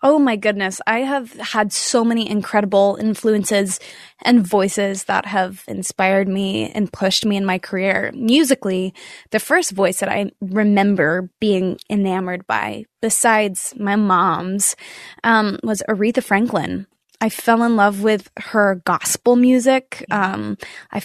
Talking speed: 140 wpm